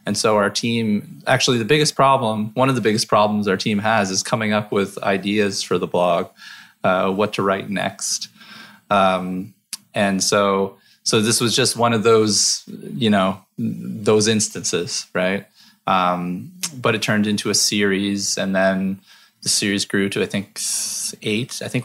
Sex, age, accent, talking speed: male, 20-39, American, 170 wpm